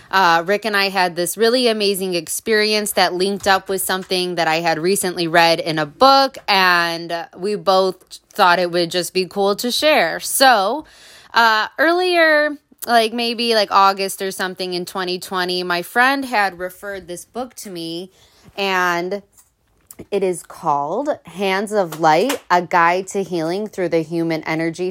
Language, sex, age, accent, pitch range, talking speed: English, female, 20-39, American, 170-215 Hz, 160 wpm